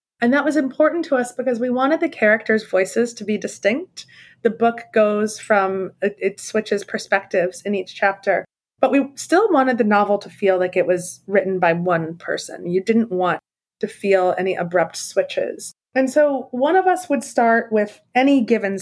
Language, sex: English, female